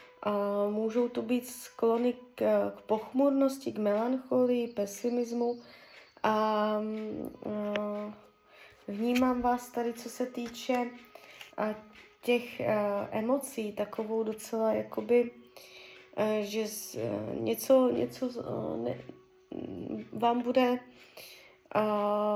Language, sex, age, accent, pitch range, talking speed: Czech, female, 20-39, native, 210-245 Hz, 100 wpm